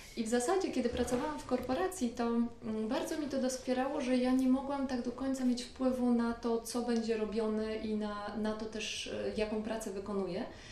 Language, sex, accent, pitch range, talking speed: Polish, female, native, 215-265 Hz, 190 wpm